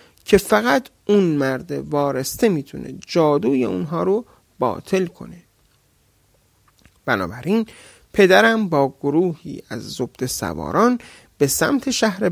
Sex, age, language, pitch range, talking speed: male, 30-49, Persian, 135-195 Hz, 100 wpm